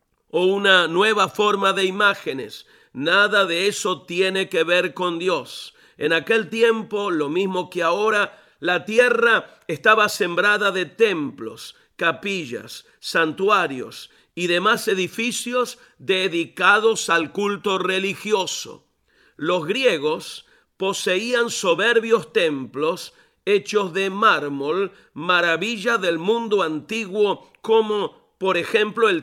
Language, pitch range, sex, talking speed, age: Spanish, 190-225 Hz, male, 105 wpm, 50-69